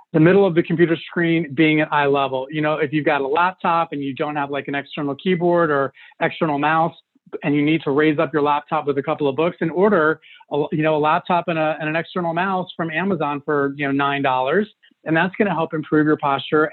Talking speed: 245 wpm